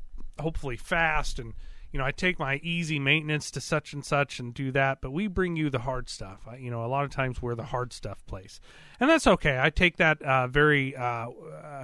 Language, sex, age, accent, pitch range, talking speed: English, male, 30-49, American, 125-155 Hz, 230 wpm